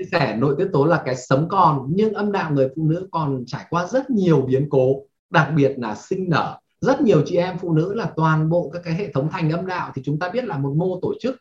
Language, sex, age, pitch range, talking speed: Vietnamese, male, 20-39, 150-210 Hz, 270 wpm